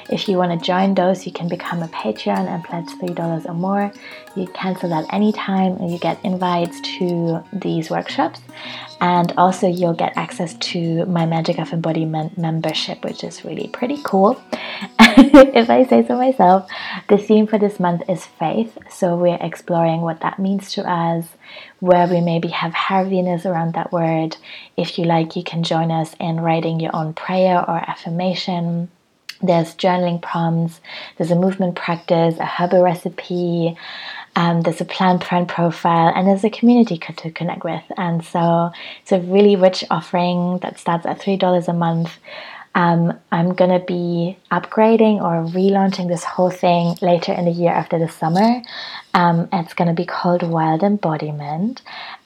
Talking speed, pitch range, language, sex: 165 wpm, 170-190 Hz, English, female